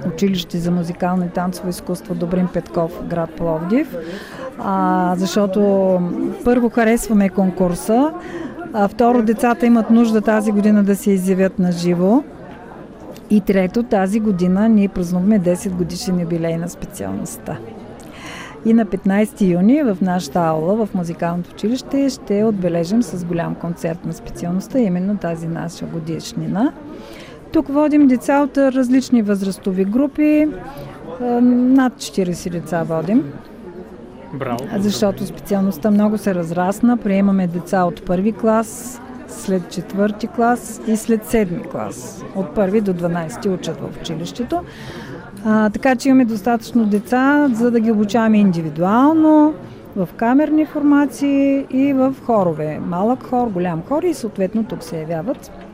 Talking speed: 125 wpm